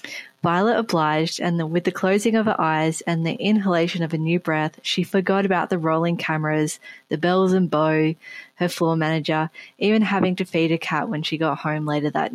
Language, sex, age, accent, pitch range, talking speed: English, female, 20-39, Australian, 160-185 Hz, 200 wpm